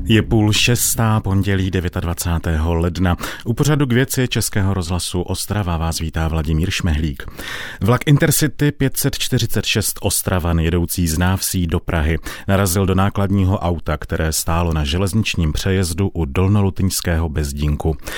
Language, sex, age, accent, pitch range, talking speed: Czech, male, 40-59, native, 85-105 Hz, 125 wpm